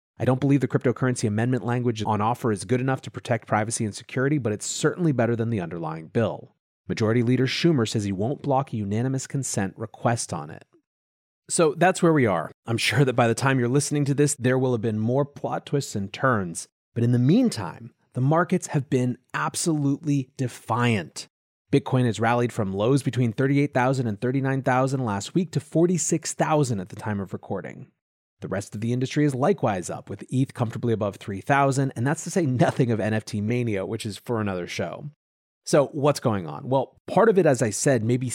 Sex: male